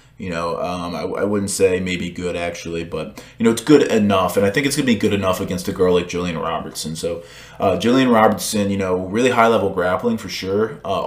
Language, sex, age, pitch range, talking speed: English, male, 20-39, 90-120 Hz, 240 wpm